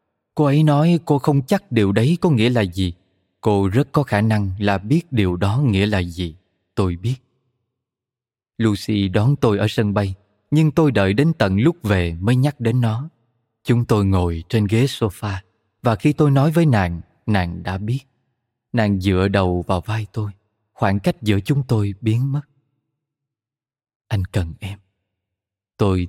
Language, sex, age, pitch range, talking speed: Vietnamese, male, 20-39, 95-125 Hz, 170 wpm